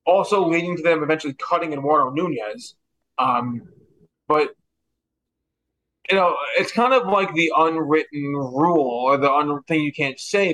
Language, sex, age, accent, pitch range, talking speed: English, male, 20-39, American, 145-170 Hz, 150 wpm